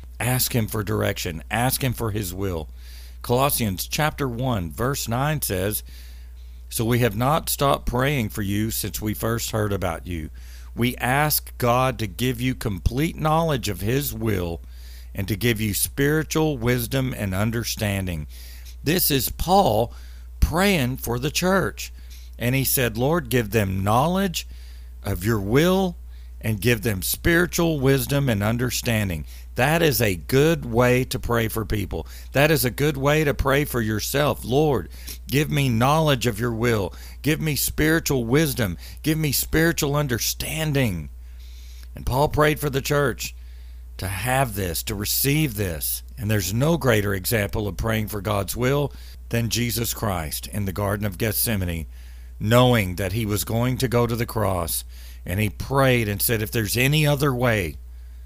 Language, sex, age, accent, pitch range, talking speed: English, male, 50-69, American, 90-130 Hz, 160 wpm